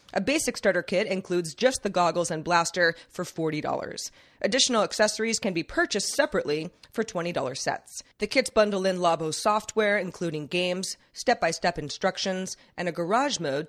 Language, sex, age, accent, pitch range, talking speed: English, female, 30-49, American, 165-220 Hz, 155 wpm